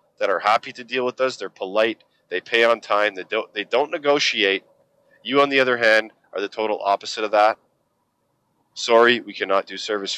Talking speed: 195 wpm